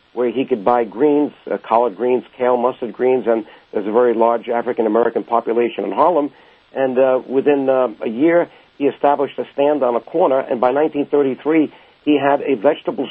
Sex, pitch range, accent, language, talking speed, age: male, 120-145 Hz, American, English, 185 wpm, 50-69